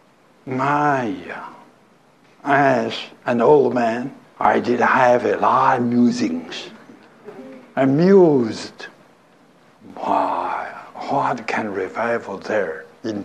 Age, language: 60-79, English